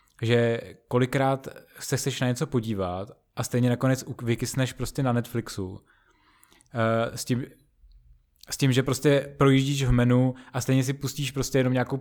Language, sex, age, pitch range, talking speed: Czech, male, 20-39, 115-130 Hz, 155 wpm